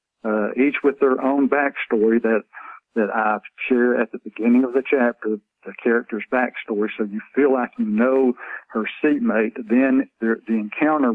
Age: 60-79